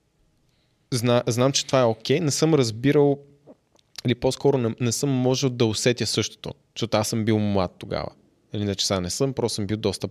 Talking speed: 200 wpm